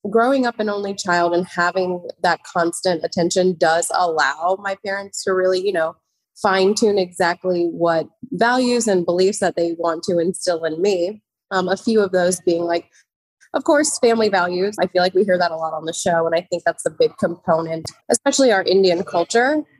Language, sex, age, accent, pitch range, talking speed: English, female, 20-39, American, 170-210 Hz, 195 wpm